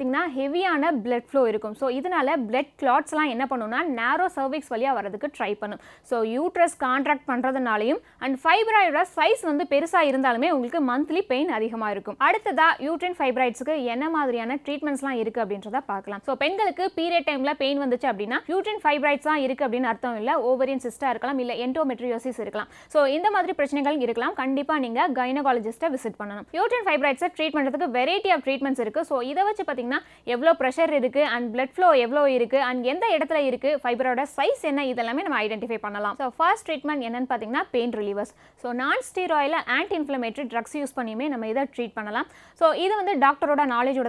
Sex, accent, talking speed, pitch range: female, native, 135 wpm, 245-315 Hz